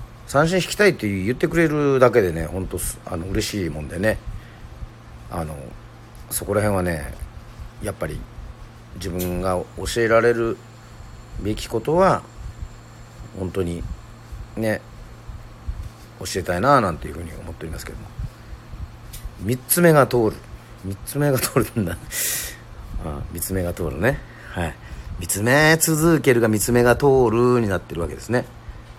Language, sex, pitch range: Japanese, male, 85-120 Hz